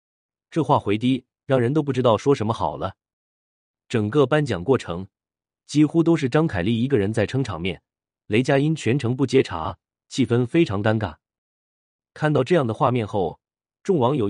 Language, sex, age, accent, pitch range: Chinese, male, 30-49, native, 100-140 Hz